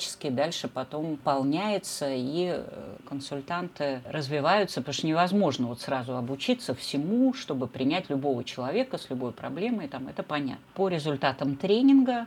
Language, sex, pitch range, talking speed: Russian, female, 135-185 Hz, 115 wpm